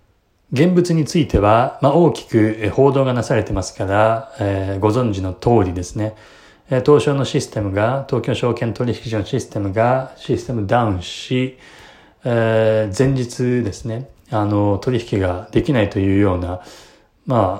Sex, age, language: male, 20-39, Japanese